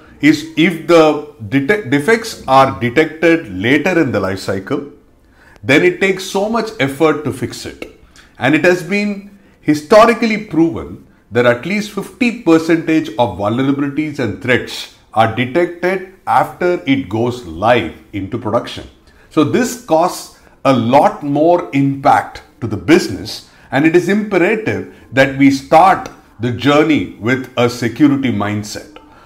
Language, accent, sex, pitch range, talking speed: English, Indian, male, 120-180 Hz, 135 wpm